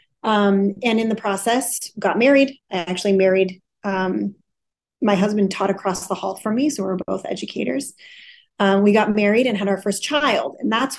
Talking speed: 185 wpm